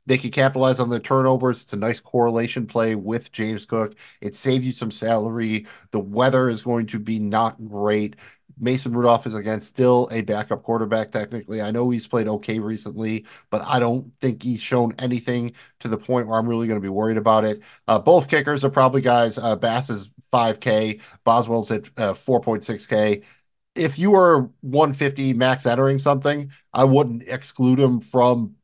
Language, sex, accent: English, male, American